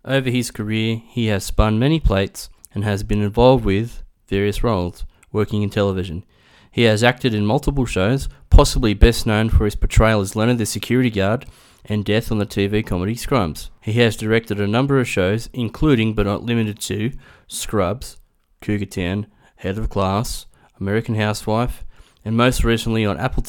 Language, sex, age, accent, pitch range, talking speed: English, male, 20-39, Australian, 100-115 Hz, 170 wpm